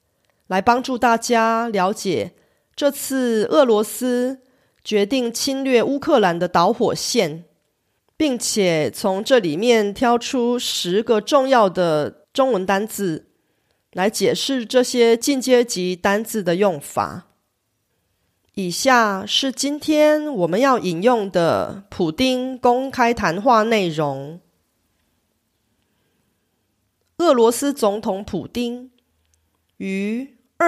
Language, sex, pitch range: Korean, female, 185-255 Hz